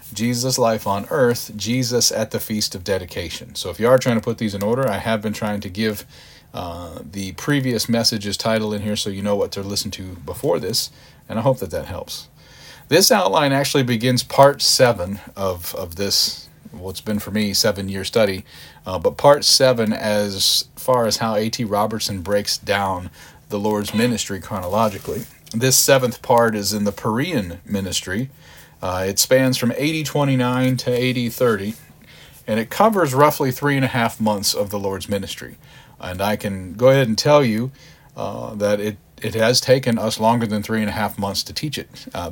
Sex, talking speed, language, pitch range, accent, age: male, 190 wpm, English, 100-120 Hz, American, 40-59